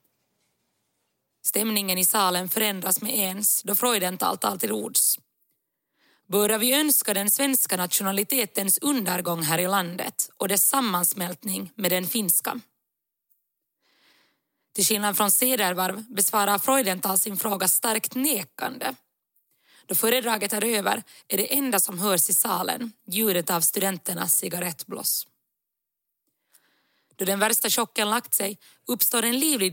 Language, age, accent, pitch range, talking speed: Swedish, 20-39, native, 190-230 Hz, 120 wpm